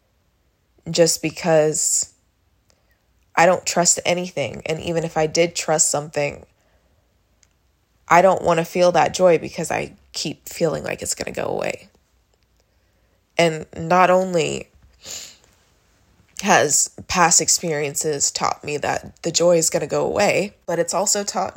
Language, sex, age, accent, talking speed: English, female, 20-39, American, 140 wpm